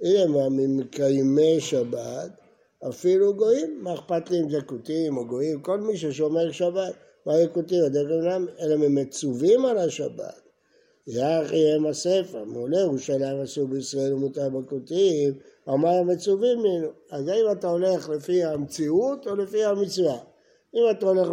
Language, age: Hebrew, 60-79